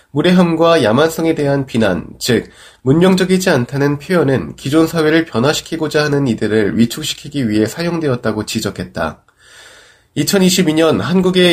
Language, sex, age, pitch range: Korean, male, 20-39, 115-165 Hz